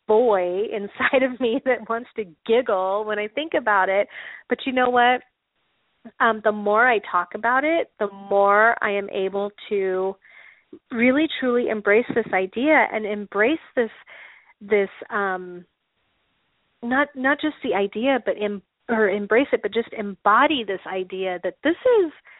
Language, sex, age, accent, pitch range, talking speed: English, female, 30-49, American, 195-245 Hz, 155 wpm